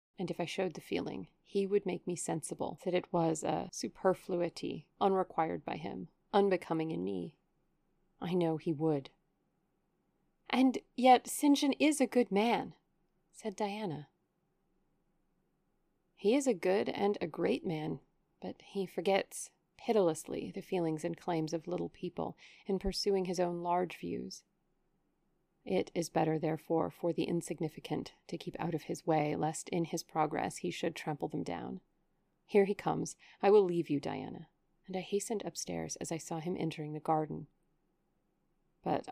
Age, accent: 30-49, American